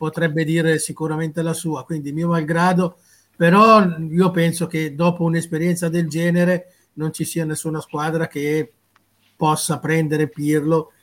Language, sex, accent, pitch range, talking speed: Italian, male, native, 155-180 Hz, 135 wpm